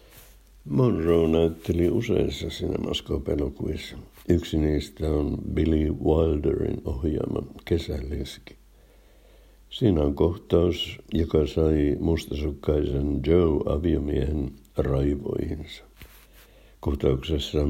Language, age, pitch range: Finnish, 60-79, 75-85 Hz